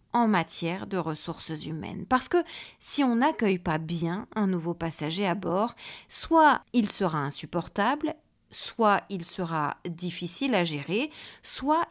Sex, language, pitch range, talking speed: female, French, 170-235 Hz, 140 wpm